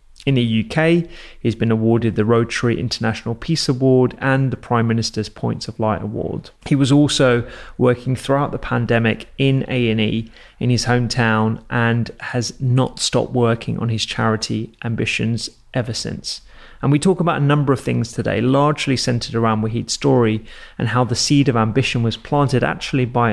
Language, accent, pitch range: English, British, 115-135 Hz